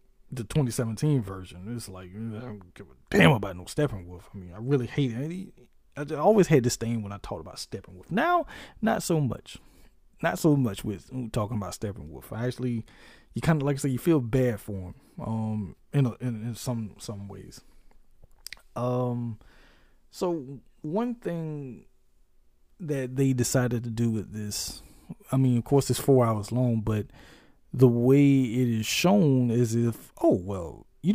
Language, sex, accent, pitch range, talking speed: English, male, American, 110-145 Hz, 175 wpm